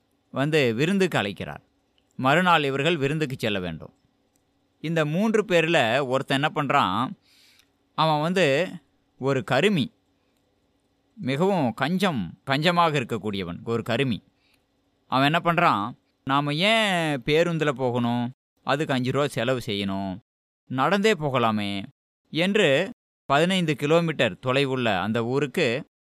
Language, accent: Tamil, native